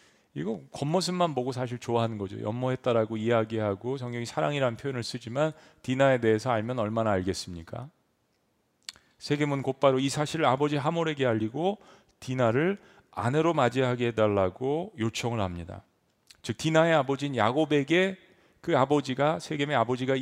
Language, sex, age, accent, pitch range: Korean, male, 40-59, native, 115-155 Hz